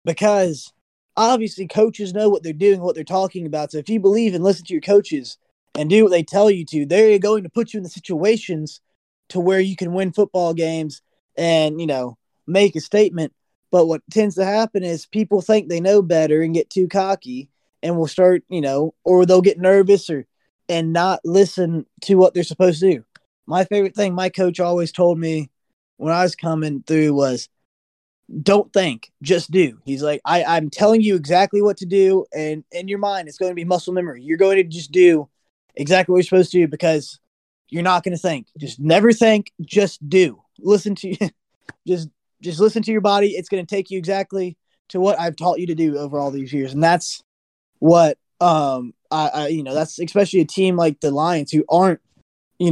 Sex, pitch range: male, 155-195 Hz